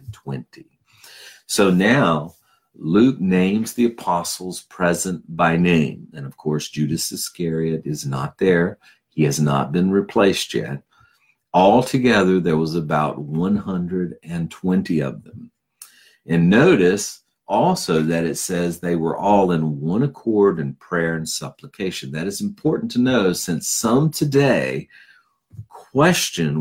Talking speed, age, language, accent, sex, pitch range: 125 wpm, 50-69, English, American, male, 80-110 Hz